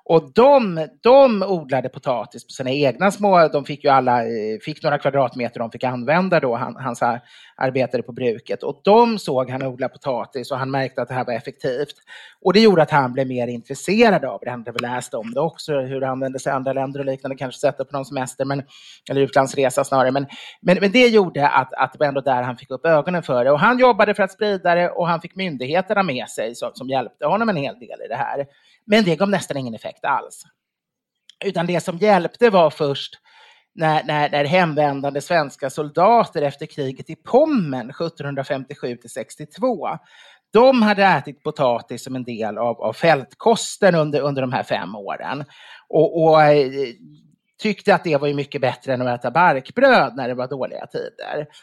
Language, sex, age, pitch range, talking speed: English, male, 30-49, 130-185 Hz, 195 wpm